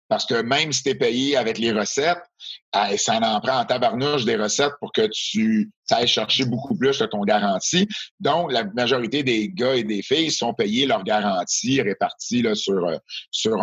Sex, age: male, 50-69